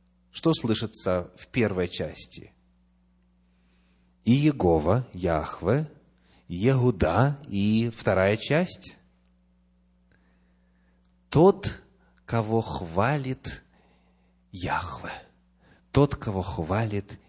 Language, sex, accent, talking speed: Russian, male, native, 60 wpm